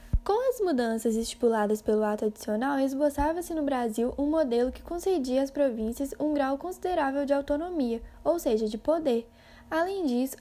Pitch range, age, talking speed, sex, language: 240-320 Hz, 10-29, 155 wpm, female, Portuguese